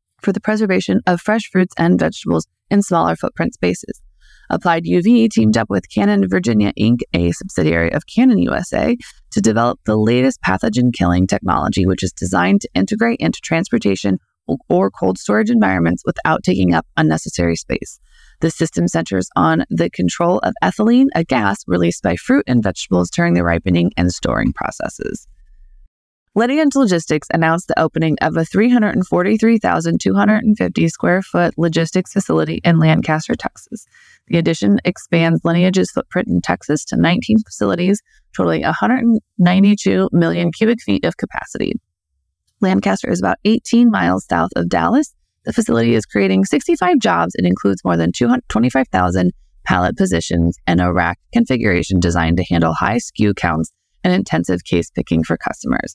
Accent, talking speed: American, 145 wpm